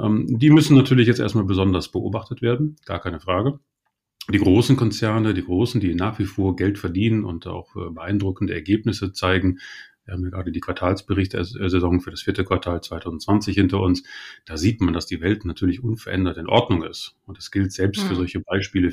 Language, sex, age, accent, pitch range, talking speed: German, male, 30-49, German, 90-110 Hz, 185 wpm